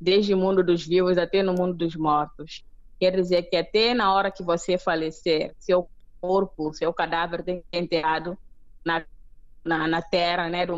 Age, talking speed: 20-39, 185 wpm